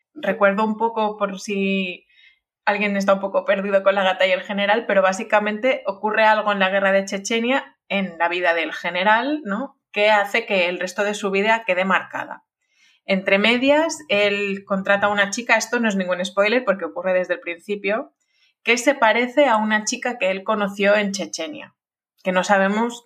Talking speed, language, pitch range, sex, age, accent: 185 wpm, Spanish, 185-235 Hz, female, 20-39, Spanish